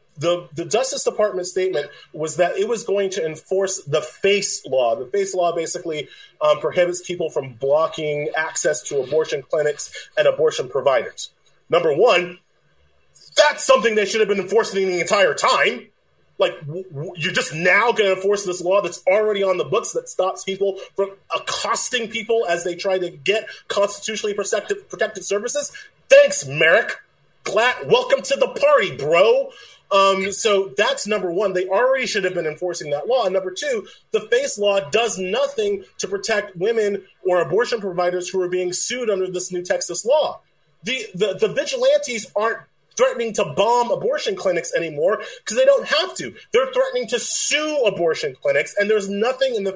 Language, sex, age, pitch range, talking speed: English, male, 30-49, 180-290 Hz, 175 wpm